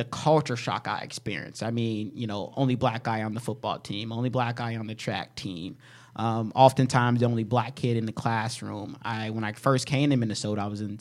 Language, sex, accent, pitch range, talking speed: English, male, American, 115-135 Hz, 225 wpm